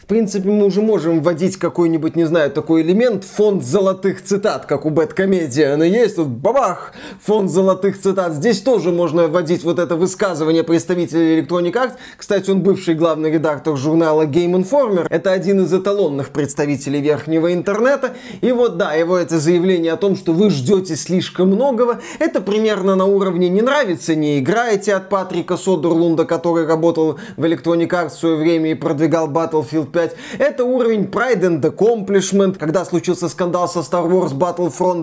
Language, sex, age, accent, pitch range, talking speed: Russian, male, 20-39, native, 165-195 Hz, 165 wpm